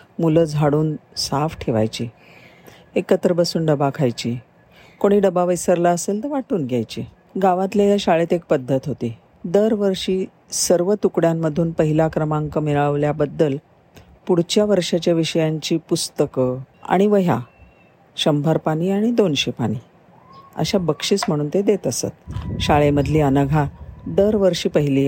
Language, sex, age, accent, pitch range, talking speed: Marathi, female, 50-69, native, 140-180 Hz, 110 wpm